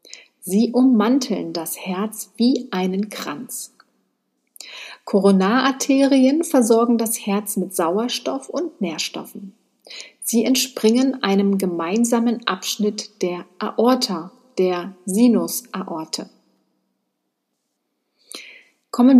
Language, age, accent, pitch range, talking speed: German, 50-69, German, 185-240 Hz, 80 wpm